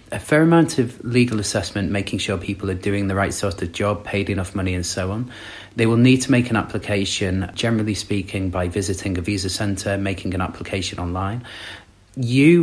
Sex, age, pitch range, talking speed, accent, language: male, 30-49, 95-110 Hz, 195 wpm, British, English